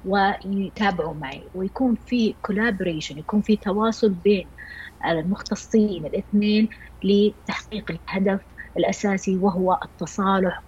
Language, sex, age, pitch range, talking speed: Arabic, female, 30-49, 175-220 Hz, 90 wpm